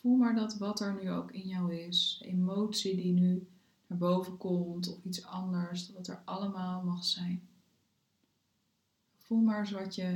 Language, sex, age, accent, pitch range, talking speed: Dutch, female, 20-39, Dutch, 180-195 Hz, 170 wpm